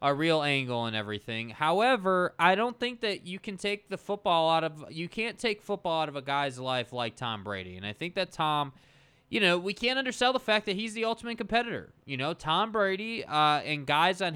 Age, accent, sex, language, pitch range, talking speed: 20-39, American, male, English, 135-190 Hz, 225 wpm